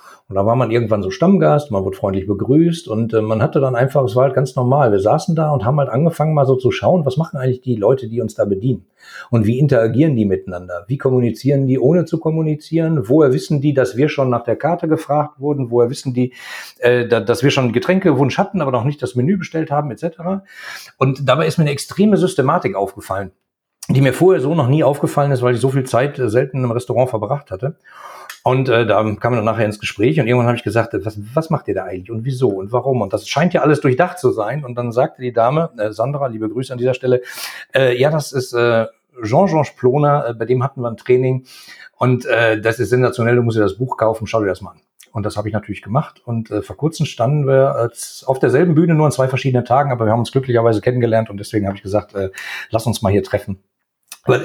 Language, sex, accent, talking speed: German, male, German, 235 wpm